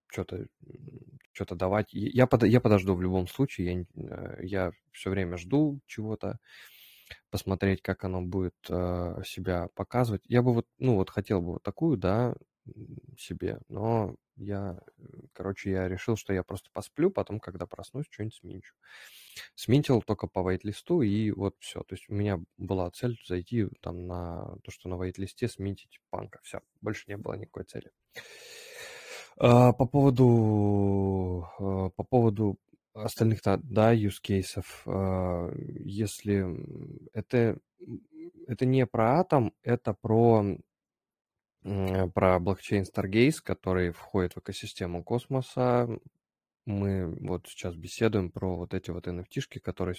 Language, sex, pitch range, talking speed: Russian, male, 95-120 Hz, 125 wpm